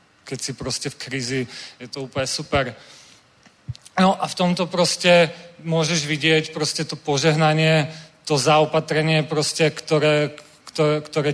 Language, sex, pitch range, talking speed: Czech, male, 140-155 Hz, 120 wpm